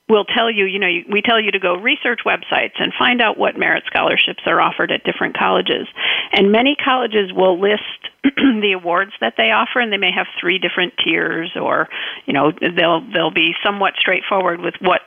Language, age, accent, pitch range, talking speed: English, 50-69, American, 180-220 Hz, 200 wpm